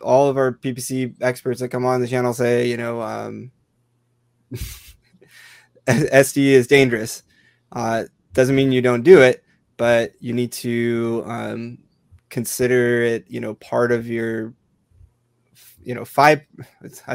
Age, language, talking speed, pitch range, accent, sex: 20-39, English, 135 wpm, 115-130 Hz, American, male